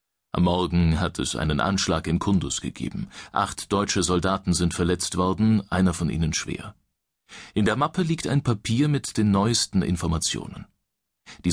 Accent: German